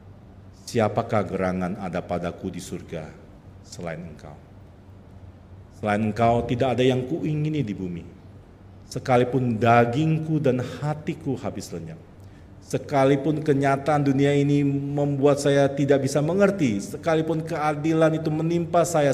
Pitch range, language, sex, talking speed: 95-140 Hz, English, male, 115 wpm